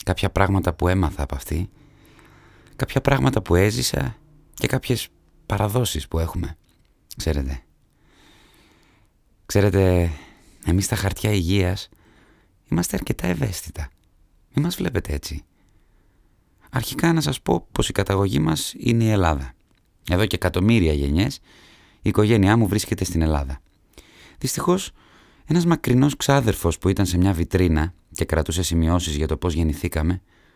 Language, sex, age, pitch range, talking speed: Greek, male, 30-49, 80-110 Hz, 130 wpm